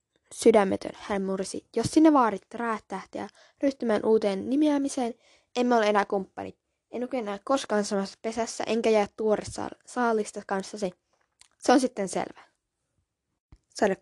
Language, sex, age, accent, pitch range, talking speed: Finnish, female, 10-29, native, 200-260 Hz, 135 wpm